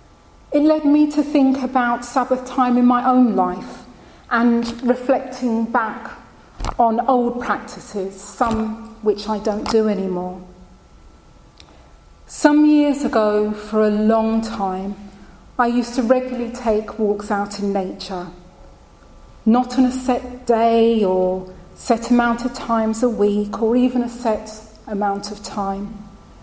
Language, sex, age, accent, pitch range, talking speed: English, female, 30-49, British, 195-250 Hz, 135 wpm